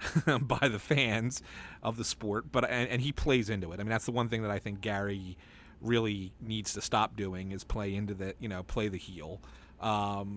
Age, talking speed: 30-49, 220 wpm